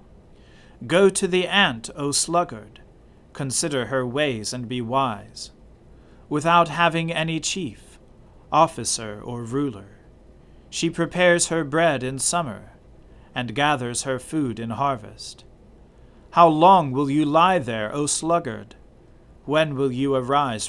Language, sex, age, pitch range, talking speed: English, male, 40-59, 120-165 Hz, 125 wpm